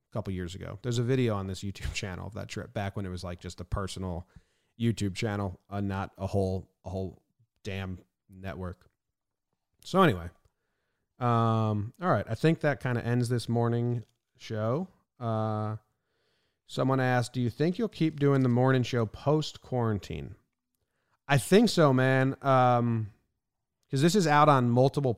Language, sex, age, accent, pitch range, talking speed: English, male, 30-49, American, 100-130 Hz, 165 wpm